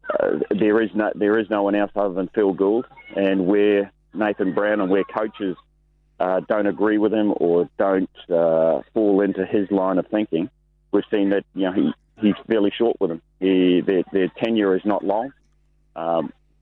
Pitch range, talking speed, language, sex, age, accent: 95-110 Hz, 190 wpm, English, male, 40-59, Australian